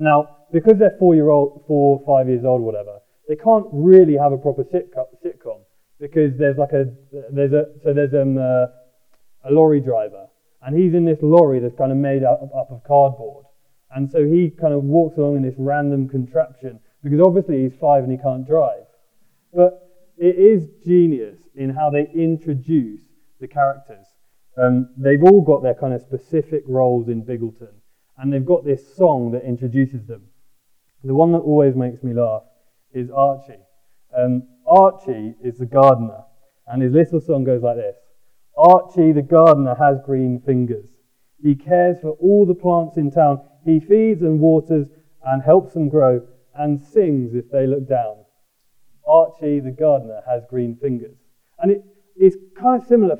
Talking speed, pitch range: 170 wpm, 130-165 Hz